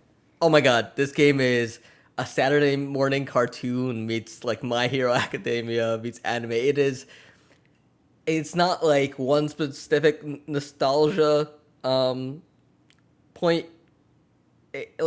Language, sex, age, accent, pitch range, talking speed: English, male, 10-29, American, 115-145 Hz, 110 wpm